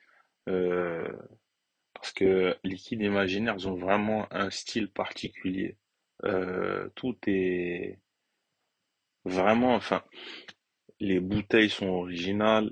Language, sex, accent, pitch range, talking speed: French, male, French, 90-105 Hz, 95 wpm